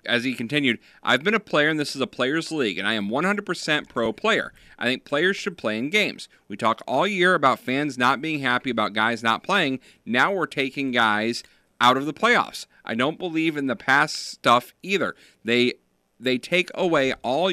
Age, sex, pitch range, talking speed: 40-59, male, 130-185 Hz, 205 wpm